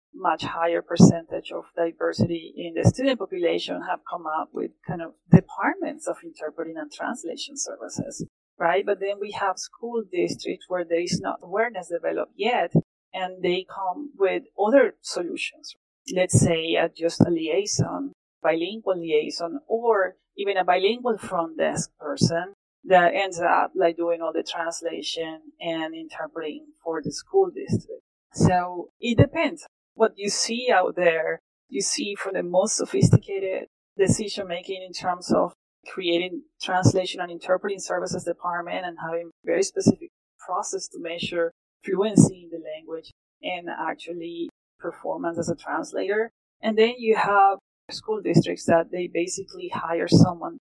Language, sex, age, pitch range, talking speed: English, female, 30-49, 170-220 Hz, 145 wpm